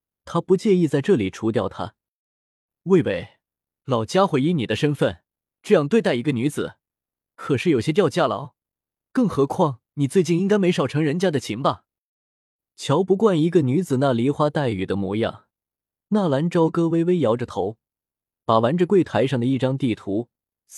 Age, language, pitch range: 20-39, Chinese, 120-170 Hz